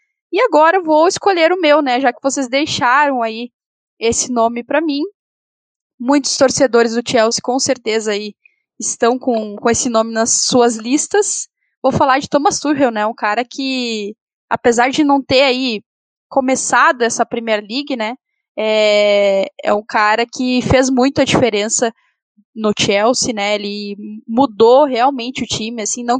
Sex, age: female, 10-29